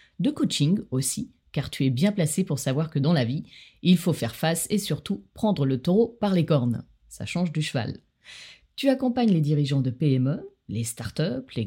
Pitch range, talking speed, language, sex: 135-190 Hz, 200 wpm, French, female